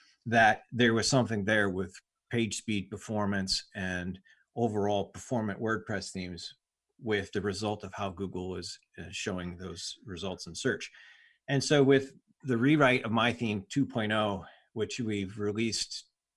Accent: American